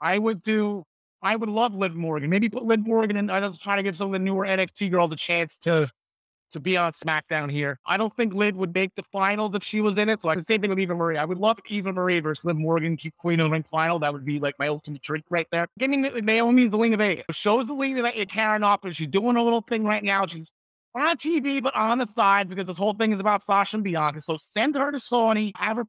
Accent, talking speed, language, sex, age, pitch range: American, 275 wpm, English, male, 30-49, 180-235 Hz